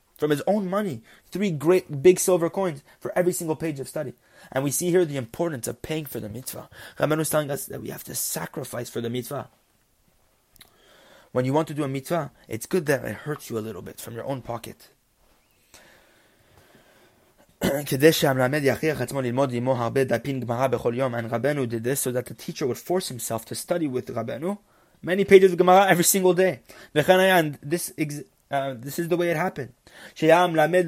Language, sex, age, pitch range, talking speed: English, male, 20-39, 125-170 Hz, 185 wpm